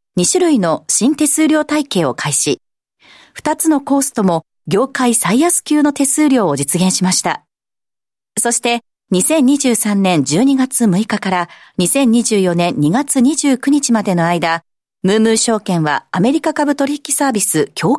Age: 40-59